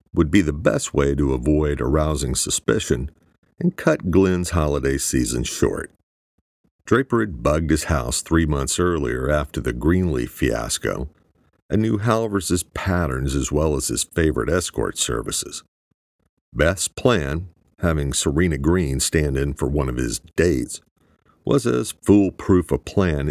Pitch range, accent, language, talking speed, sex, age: 70-90 Hz, American, English, 140 wpm, male, 50-69